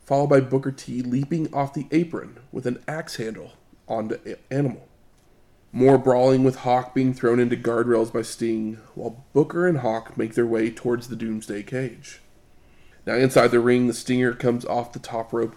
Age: 20-39